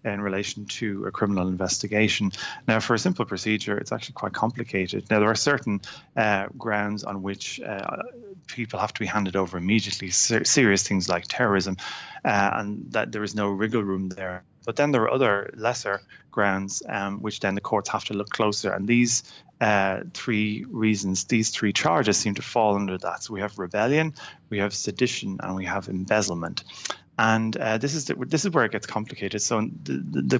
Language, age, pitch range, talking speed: English, 30-49, 100-115 Hz, 195 wpm